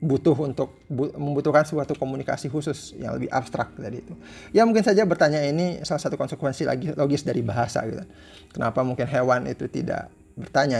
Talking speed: 170 wpm